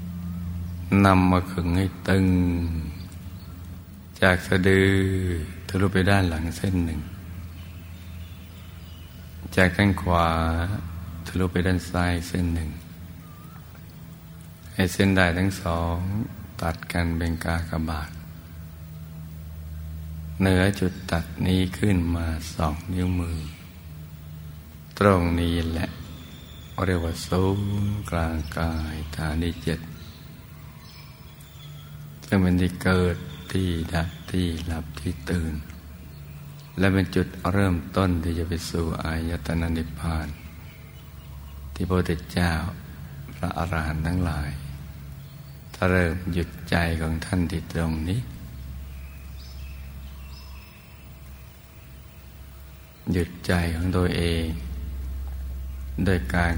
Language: Thai